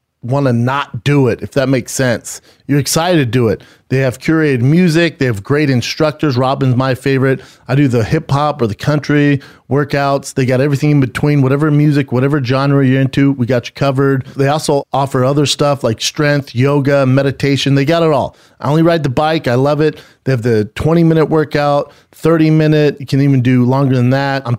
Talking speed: 205 wpm